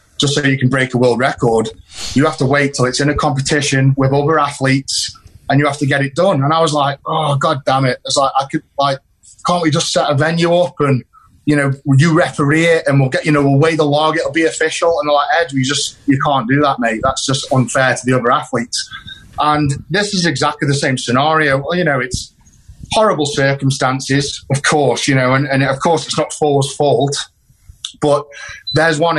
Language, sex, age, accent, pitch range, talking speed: English, male, 30-49, British, 135-155 Hz, 230 wpm